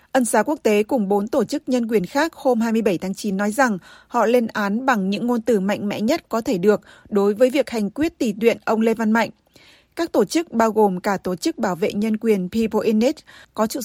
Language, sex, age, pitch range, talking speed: Vietnamese, female, 20-39, 200-235 Hz, 250 wpm